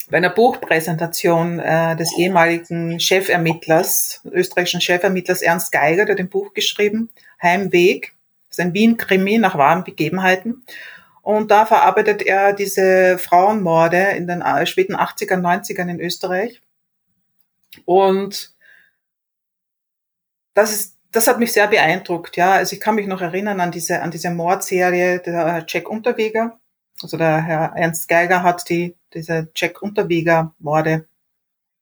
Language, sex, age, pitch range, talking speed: German, female, 30-49, 175-205 Hz, 130 wpm